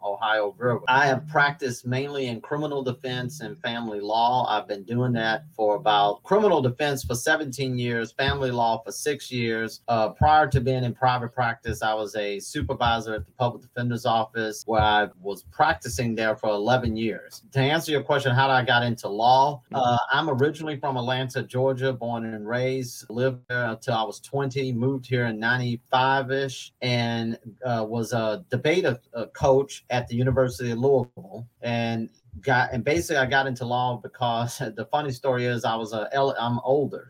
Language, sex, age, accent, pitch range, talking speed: English, male, 40-59, American, 115-130 Hz, 180 wpm